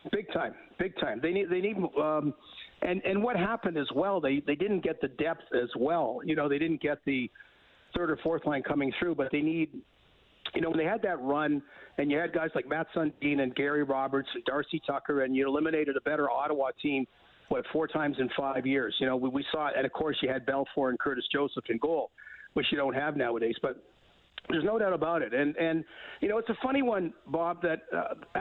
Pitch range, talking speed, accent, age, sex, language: 140-175 Hz, 235 wpm, American, 50-69, male, English